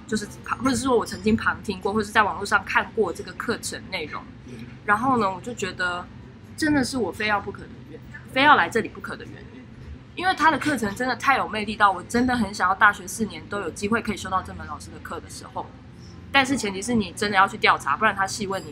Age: 20-39